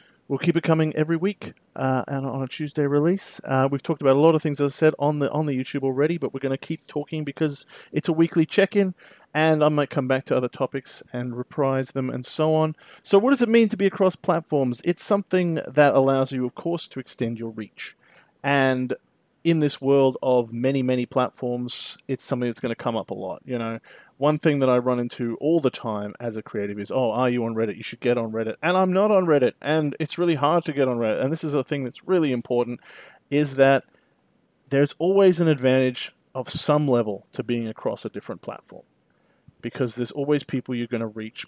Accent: Australian